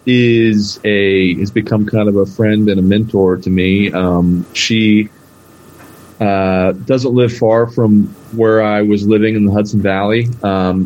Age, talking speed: 30-49, 160 wpm